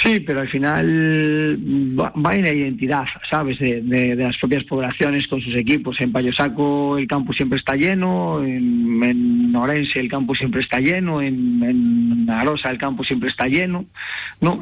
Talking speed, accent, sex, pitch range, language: 170 wpm, Spanish, male, 125-145 Hz, Spanish